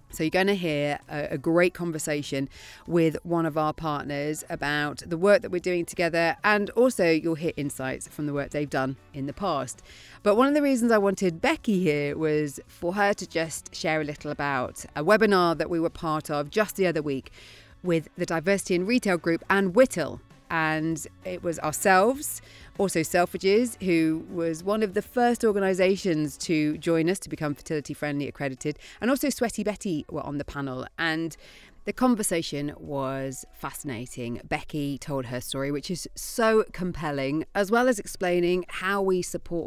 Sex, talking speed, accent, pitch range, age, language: female, 180 wpm, British, 145-190 Hz, 30-49, English